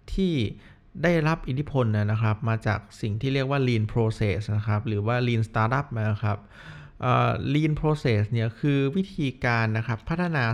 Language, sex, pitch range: Thai, male, 105-140 Hz